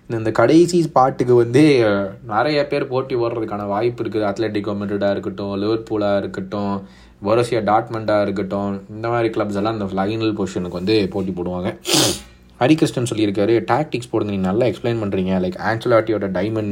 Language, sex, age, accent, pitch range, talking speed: Tamil, male, 30-49, native, 100-135 Hz, 140 wpm